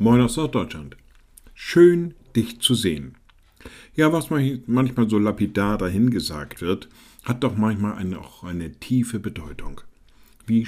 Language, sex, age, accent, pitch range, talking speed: German, male, 50-69, German, 100-115 Hz, 125 wpm